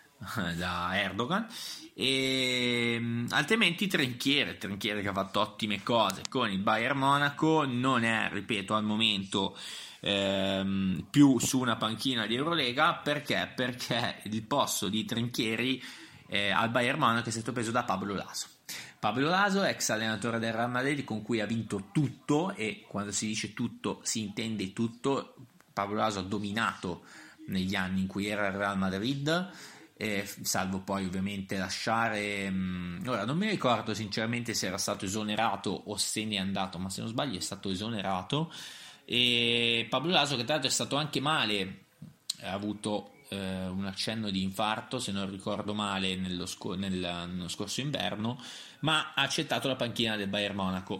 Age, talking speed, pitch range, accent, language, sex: 20-39, 160 wpm, 100-130 Hz, native, Italian, male